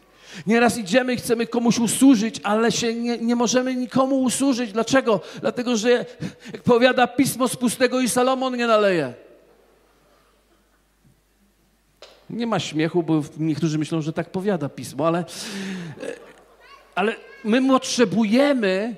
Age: 50-69